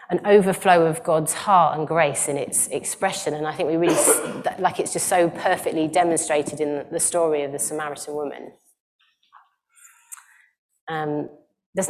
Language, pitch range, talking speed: English, 155-195 Hz, 155 wpm